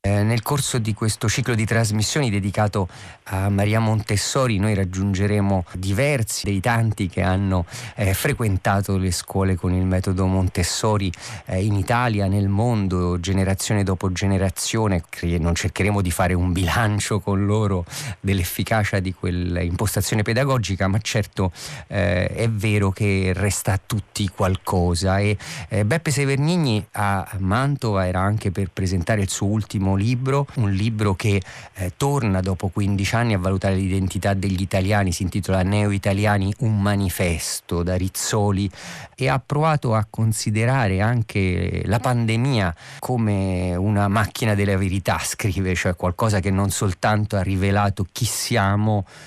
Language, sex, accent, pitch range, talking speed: Italian, male, native, 95-115 Hz, 140 wpm